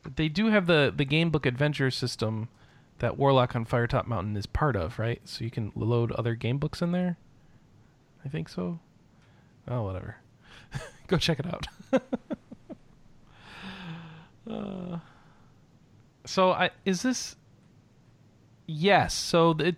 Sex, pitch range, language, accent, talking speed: male, 115-165 Hz, English, American, 135 wpm